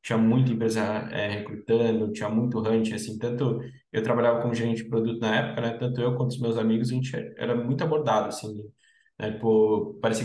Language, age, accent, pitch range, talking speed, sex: Portuguese, 10-29, Brazilian, 110-125 Hz, 200 wpm, male